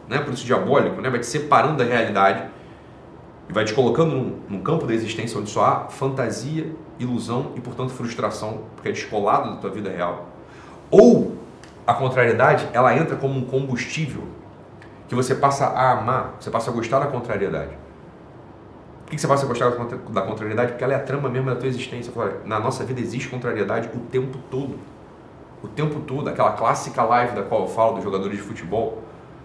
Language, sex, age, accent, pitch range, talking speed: Portuguese, male, 40-59, Brazilian, 115-135 Hz, 185 wpm